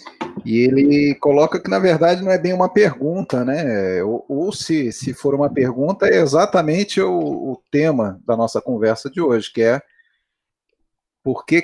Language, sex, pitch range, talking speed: Portuguese, male, 115-150 Hz, 170 wpm